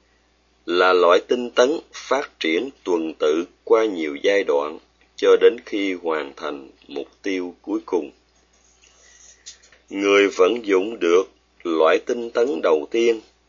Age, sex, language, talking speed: 30-49, male, Vietnamese, 135 wpm